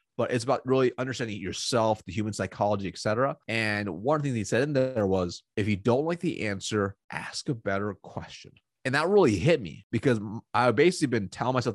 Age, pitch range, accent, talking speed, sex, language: 30-49, 100-125 Hz, American, 205 wpm, male, English